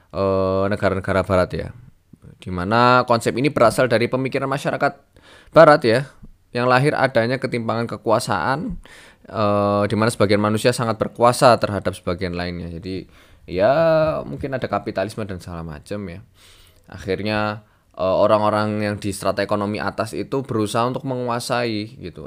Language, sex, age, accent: Indonesian, male, 20-39, native